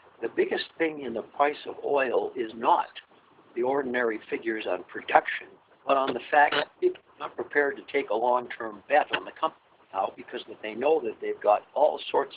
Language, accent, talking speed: English, American, 200 wpm